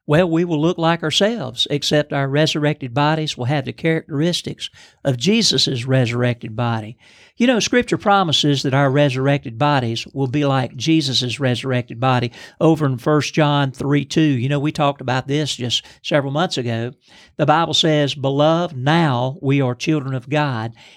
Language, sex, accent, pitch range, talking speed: English, male, American, 135-165 Hz, 165 wpm